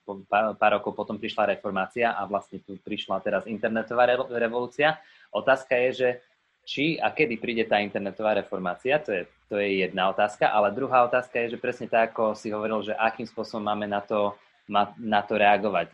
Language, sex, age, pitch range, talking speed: Slovak, male, 20-39, 100-115 Hz, 185 wpm